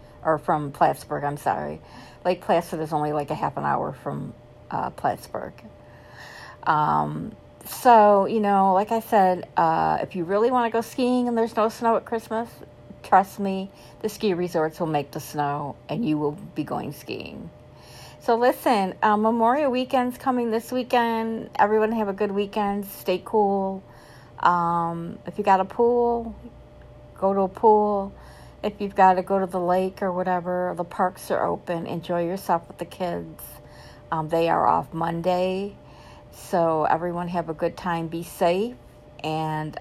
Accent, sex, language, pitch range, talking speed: American, female, English, 155-205 Hz, 165 wpm